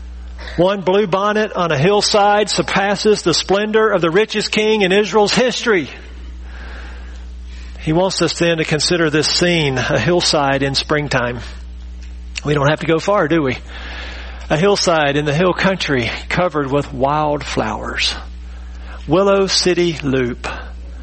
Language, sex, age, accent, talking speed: English, male, 50-69, American, 140 wpm